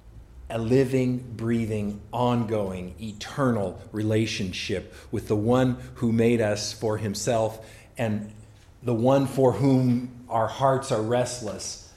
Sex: male